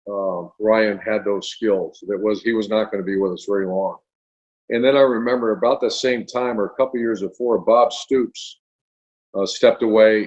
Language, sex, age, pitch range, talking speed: English, male, 50-69, 105-125 Hz, 205 wpm